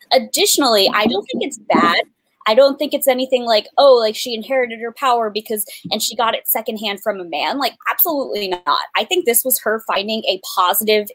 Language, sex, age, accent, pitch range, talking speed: English, female, 20-39, American, 195-270 Hz, 205 wpm